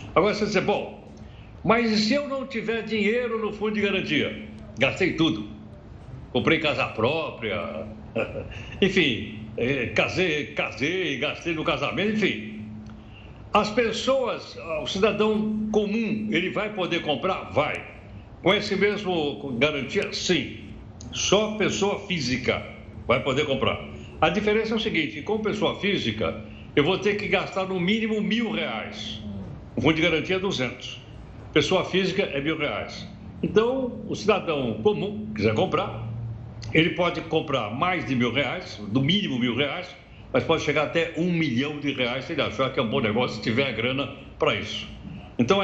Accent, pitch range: Brazilian, 125-205 Hz